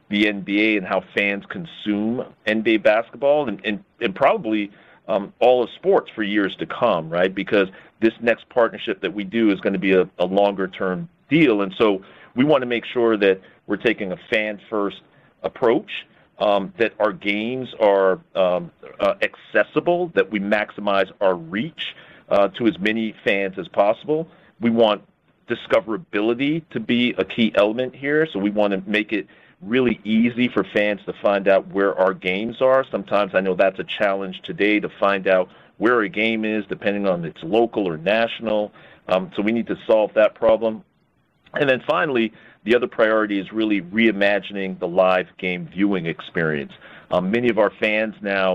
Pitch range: 100-115 Hz